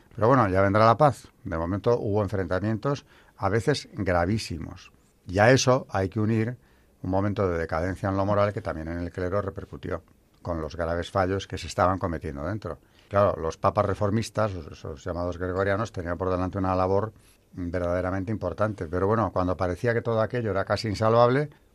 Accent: Spanish